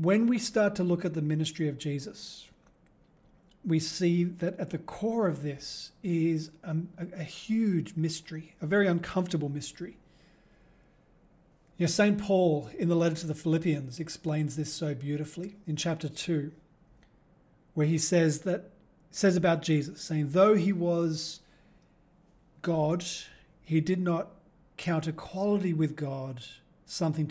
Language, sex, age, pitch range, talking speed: English, male, 40-59, 155-175 Hz, 135 wpm